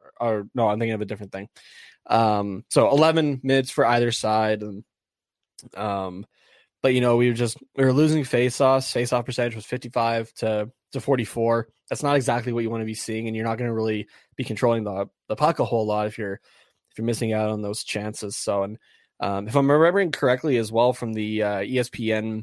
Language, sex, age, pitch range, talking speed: English, male, 20-39, 105-120 Hz, 220 wpm